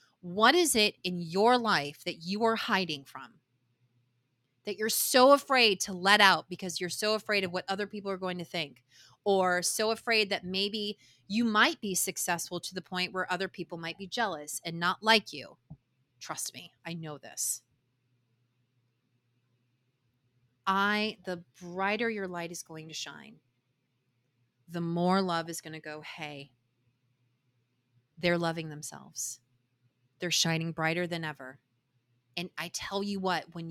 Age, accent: 30-49, American